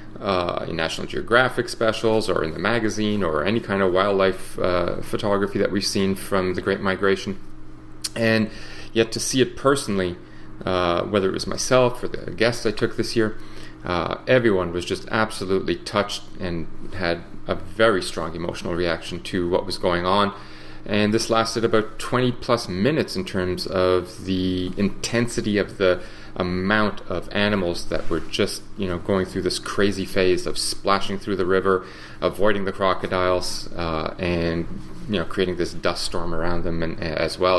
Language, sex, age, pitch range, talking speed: English, male, 30-49, 90-110 Hz, 170 wpm